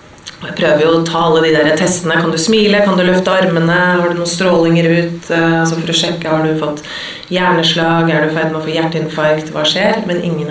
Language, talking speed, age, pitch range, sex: English, 195 wpm, 30-49, 160-180 Hz, female